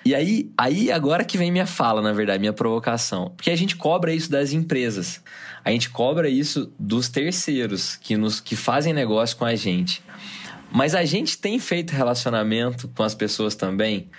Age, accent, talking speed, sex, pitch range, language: 20-39, Brazilian, 180 wpm, male, 110-160 Hz, Portuguese